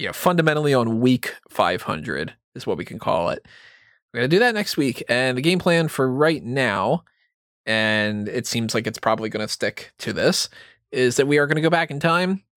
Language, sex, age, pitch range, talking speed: English, male, 20-39, 105-145 Hz, 220 wpm